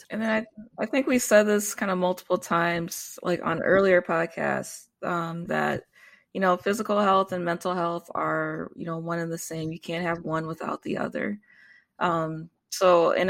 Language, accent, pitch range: English, American, 175-205 Hz